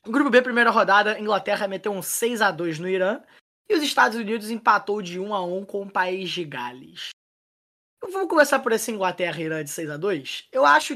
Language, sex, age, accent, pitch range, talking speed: Portuguese, male, 20-39, Brazilian, 165-235 Hz, 185 wpm